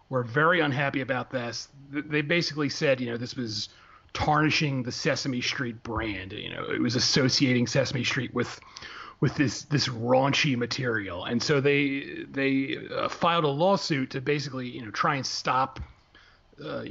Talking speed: 160 wpm